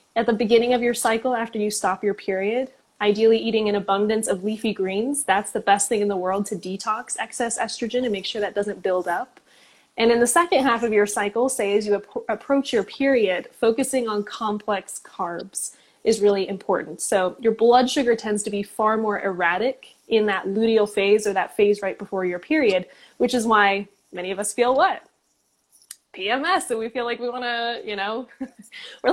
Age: 10-29